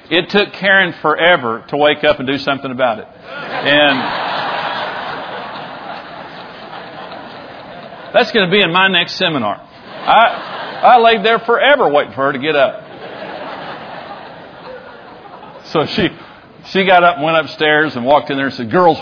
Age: 50-69